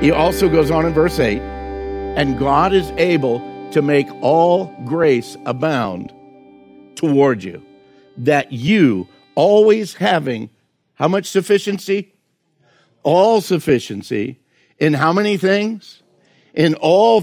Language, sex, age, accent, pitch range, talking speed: English, male, 60-79, American, 145-190 Hz, 115 wpm